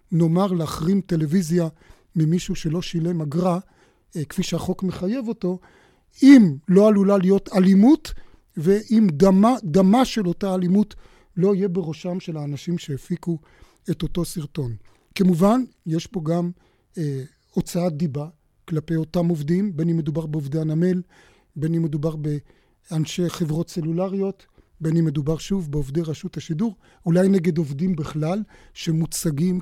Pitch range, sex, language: 155-185 Hz, male, Hebrew